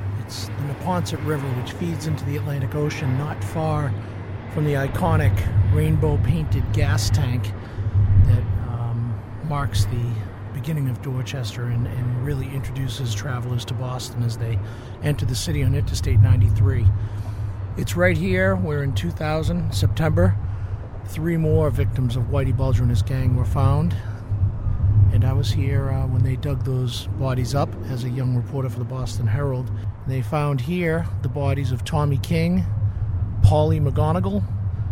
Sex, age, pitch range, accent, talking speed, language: male, 50-69, 100-125 Hz, American, 150 wpm, English